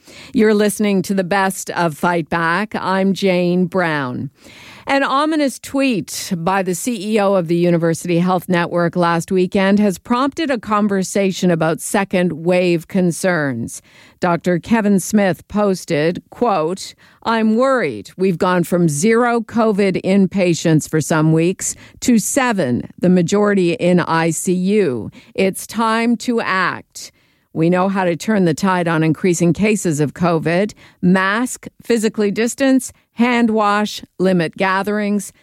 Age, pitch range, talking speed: 50-69, 165-210 Hz, 130 wpm